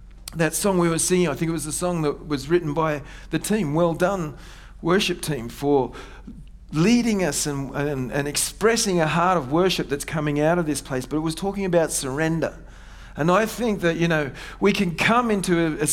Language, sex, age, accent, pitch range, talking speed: English, male, 50-69, Australian, 145-180 Hz, 210 wpm